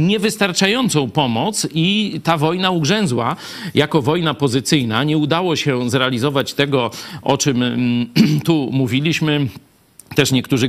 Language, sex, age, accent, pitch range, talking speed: Polish, male, 50-69, native, 130-160 Hz, 110 wpm